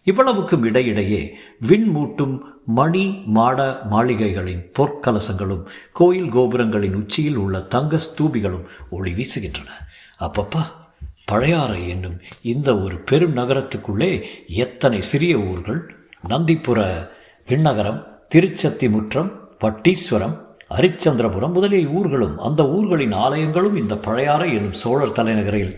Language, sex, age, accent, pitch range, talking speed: Tamil, male, 50-69, native, 105-155 Hz, 95 wpm